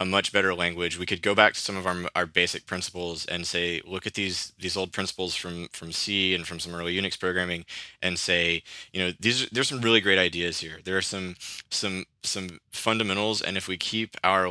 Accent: American